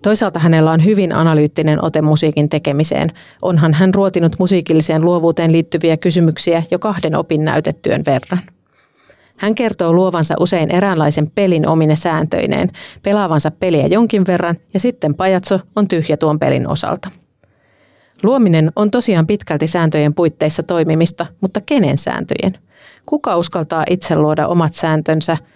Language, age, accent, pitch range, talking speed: Finnish, 30-49, native, 160-185 Hz, 130 wpm